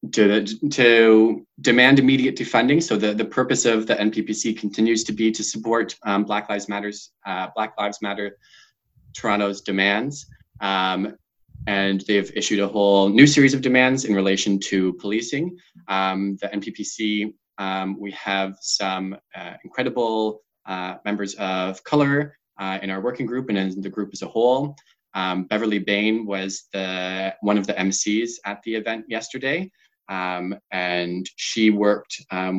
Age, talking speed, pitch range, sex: 20-39, 155 wpm, 95-115 Hz, male